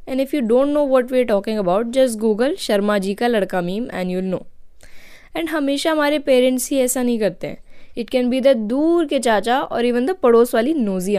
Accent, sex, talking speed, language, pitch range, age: Indian, female, 225 wpm, English, 215-275 Hz, 10-29